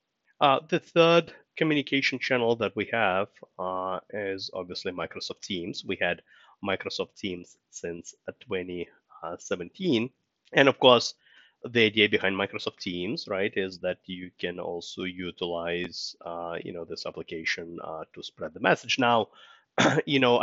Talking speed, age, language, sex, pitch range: 140 wpm, 30-49, English, male, 90-115 Hz